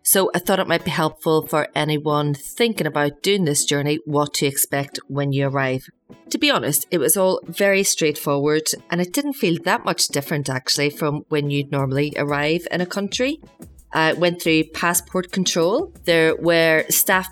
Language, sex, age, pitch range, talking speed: English, female, 30-49, 145-170 Hz, 180 wpm